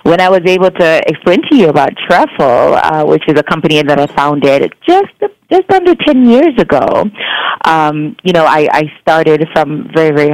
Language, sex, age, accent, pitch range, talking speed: English, female, 30-49, American, 145-175 Hz, 190 wpm